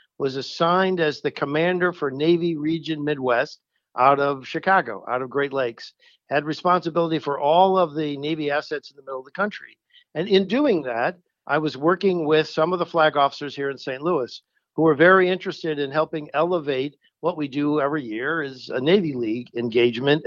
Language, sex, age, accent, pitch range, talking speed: English, male, 60-79, American, 145-185 Hz, 190 wpm